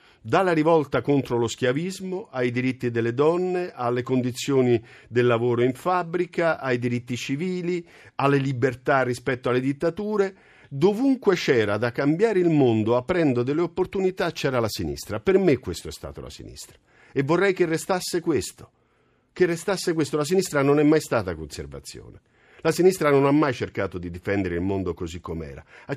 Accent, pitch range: native, 110-170 Hz